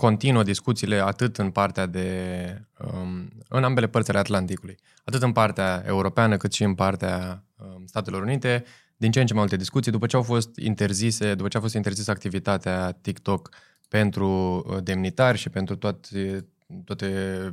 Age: 20-39